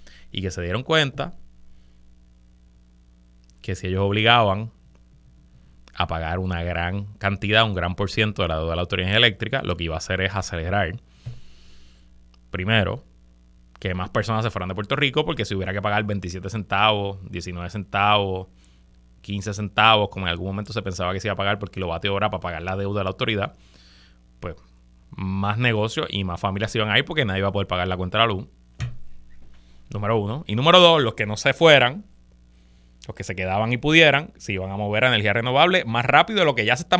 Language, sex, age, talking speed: Spanish, male, 20-39, 205 wpm